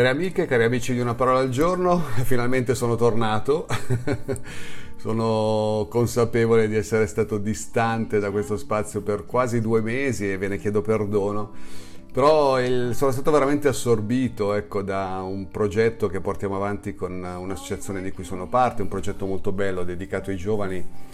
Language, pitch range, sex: Italian, 95-125 Hz, male